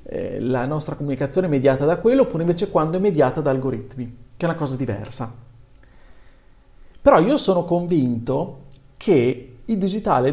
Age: 40-59